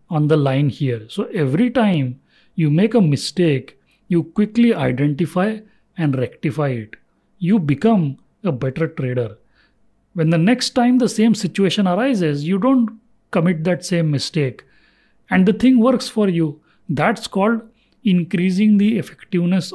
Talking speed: 145 wpm